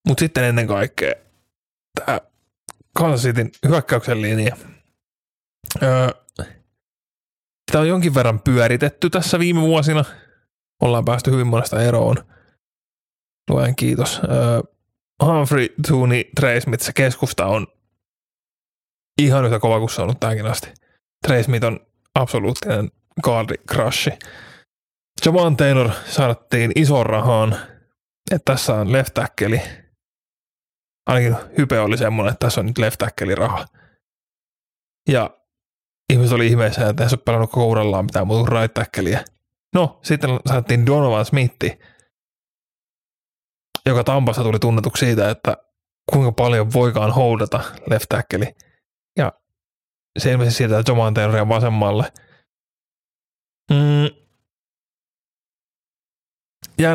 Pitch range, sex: 110-140 Hz, male